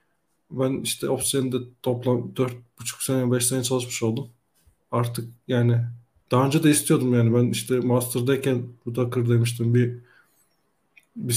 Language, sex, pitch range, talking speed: Turkish, male, 120-130 Hz, 125 wpm